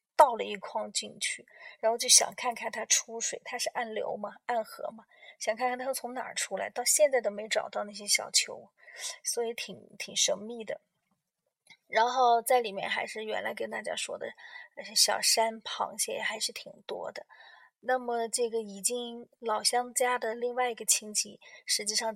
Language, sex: Chinese, female